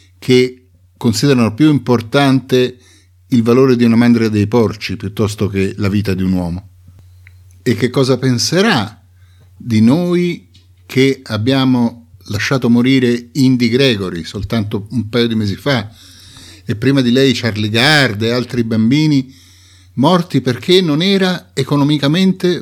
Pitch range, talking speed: 95-135 Hz, 135 wpm